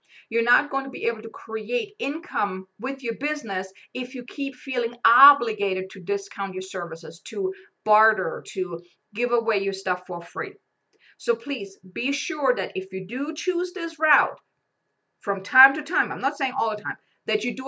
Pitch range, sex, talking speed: 195-295 Hz, female, 185 wpm